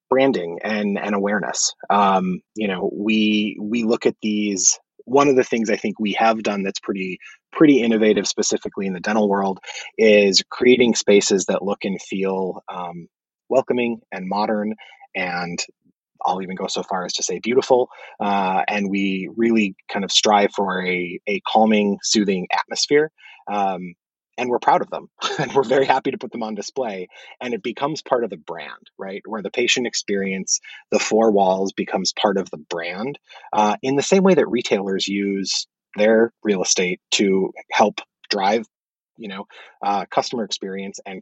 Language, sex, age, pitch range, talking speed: English, male, 30-49, 95-110 Hz, 175 wpm